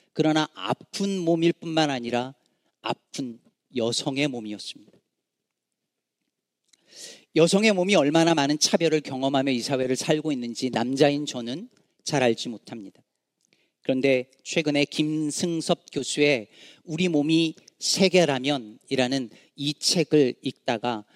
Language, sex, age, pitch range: Korean, male, 40-59, 130-180 Hz